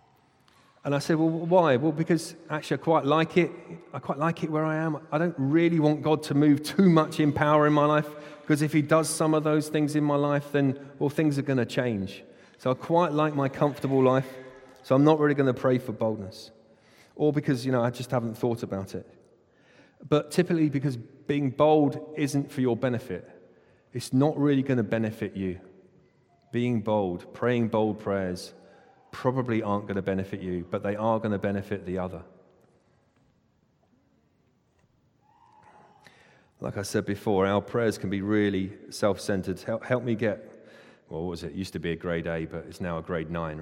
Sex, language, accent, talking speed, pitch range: male, English, British, 195 wpm, 100-150 Hz